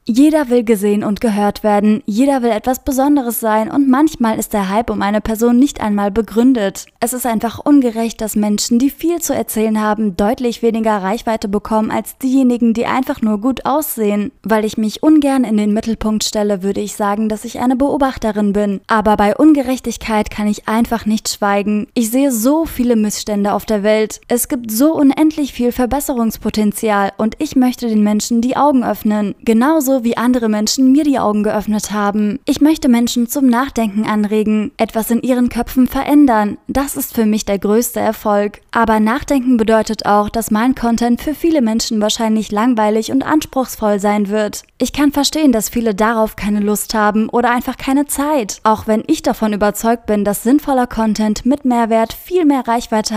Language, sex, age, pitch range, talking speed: German, female, 20-39, 215-260 Hz, 180 wpm